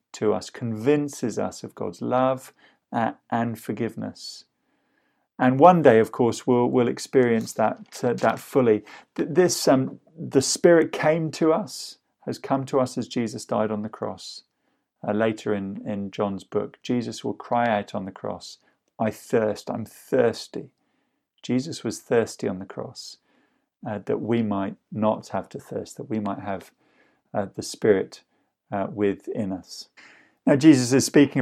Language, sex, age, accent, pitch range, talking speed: English, male, 40-59, British, 105-130 Hz, 160 wpm